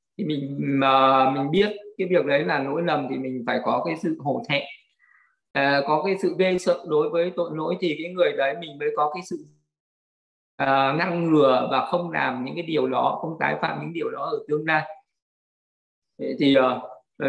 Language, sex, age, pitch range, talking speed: Vietnamese, male, 20-39, 140-175 Hz, 210 wpm